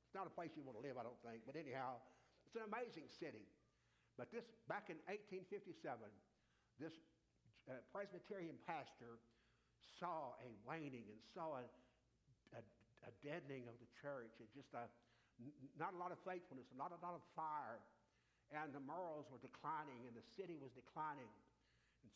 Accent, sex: American, male